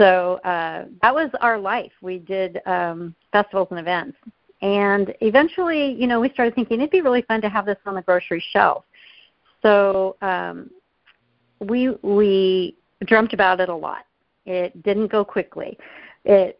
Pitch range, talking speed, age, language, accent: 185-220 Hz, 165 wpm, 50-69, English, American